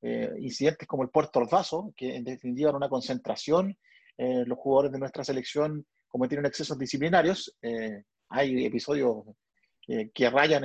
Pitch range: 135-175 Hz